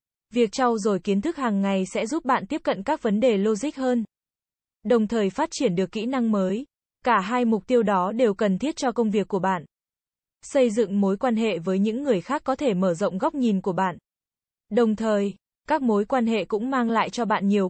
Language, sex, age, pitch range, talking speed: Vietnamese, female, 20-39, 205-250 Hz, 225 wpm